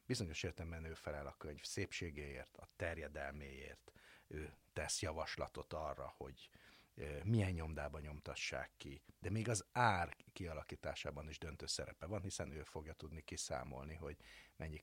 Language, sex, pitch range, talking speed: Hungarian, male, 75-95 Hz, 140 wpm